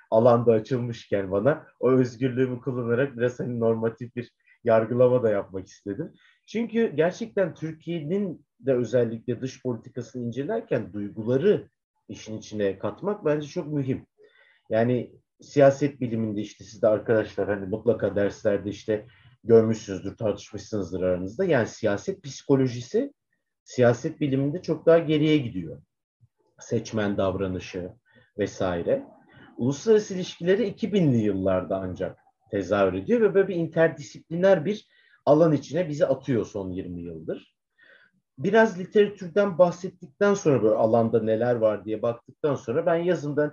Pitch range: 100-160 Hz